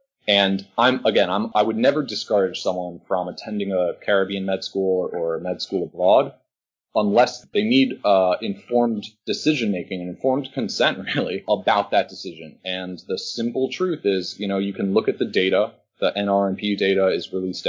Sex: male